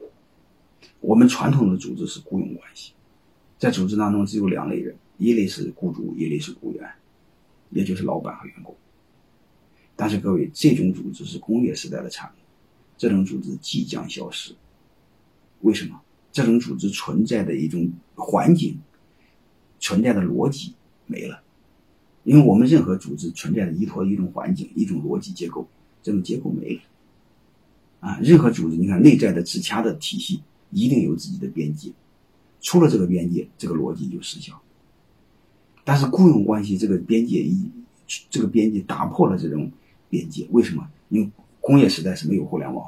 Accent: native